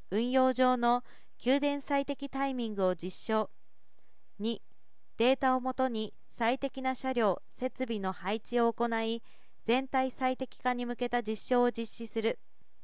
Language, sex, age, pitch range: Japanese, female, 40-59, 220-265 Hz